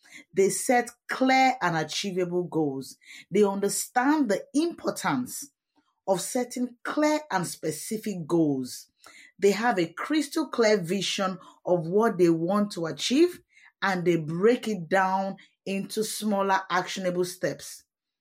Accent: Nigerian